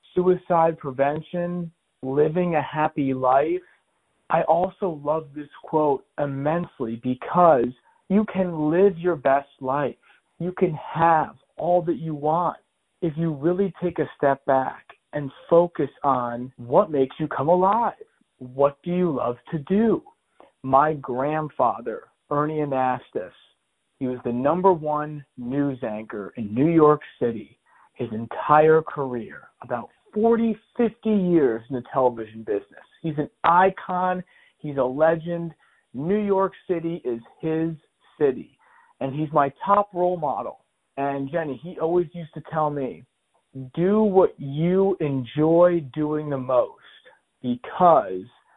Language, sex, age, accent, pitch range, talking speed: English, male, 40-59, American, 135-180 Hz, 130 wpm